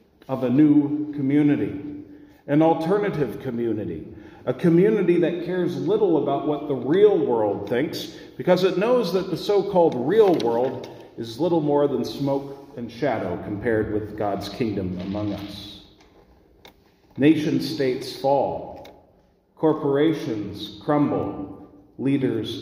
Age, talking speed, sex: 40-59, 115 wpm, male